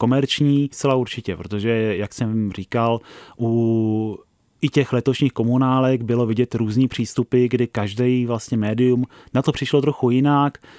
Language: Czech